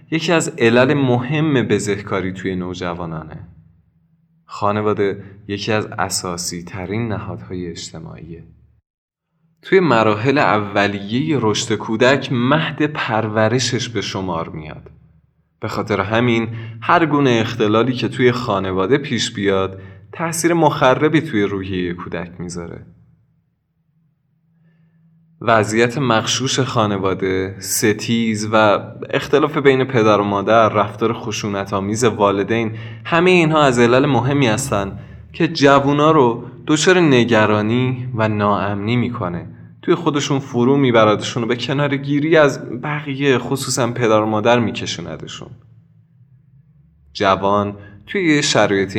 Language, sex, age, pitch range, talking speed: Persian, male, 20-39, 100-140 Hz, 105 wpm